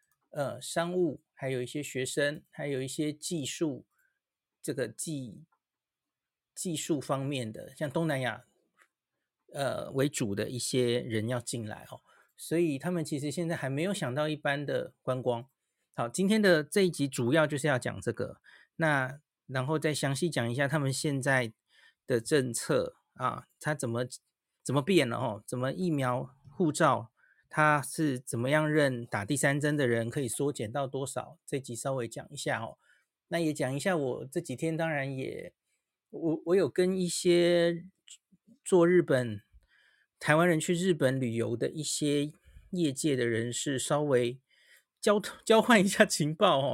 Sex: male